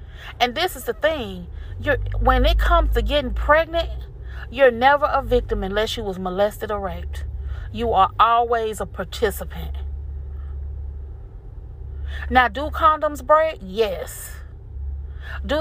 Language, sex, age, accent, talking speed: English, female, 30-49, American, 125 wpm